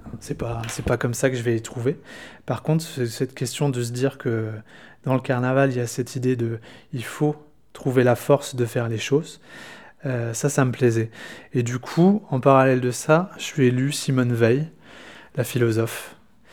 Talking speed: 215 wpm